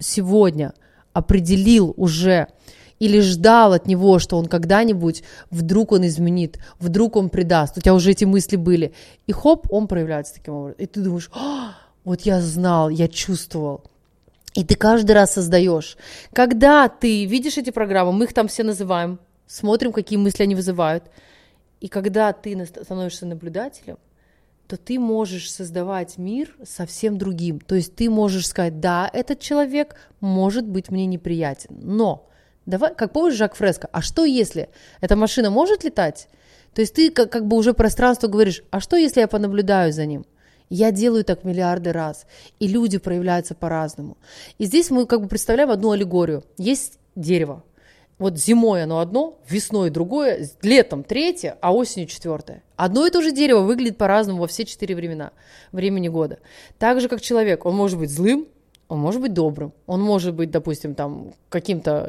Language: Russian